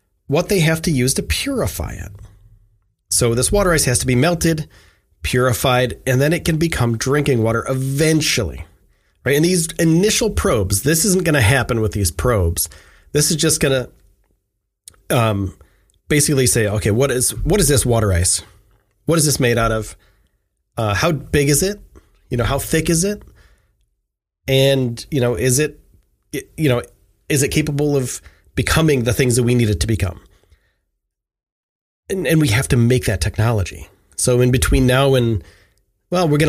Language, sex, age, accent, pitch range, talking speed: English, male, 30-49, American, 105-140 Hz, 175 wpm